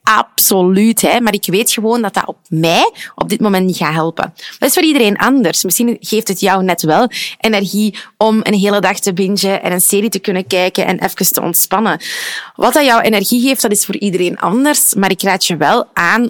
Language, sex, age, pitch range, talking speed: Dutch, female, 20-39, 175-220 Hz, 215 wpm